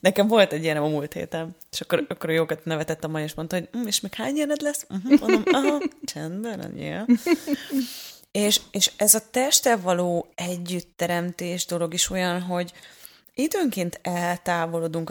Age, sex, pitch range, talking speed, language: 20-39, female, 165-195 Hz, 150 wpm, Hungarian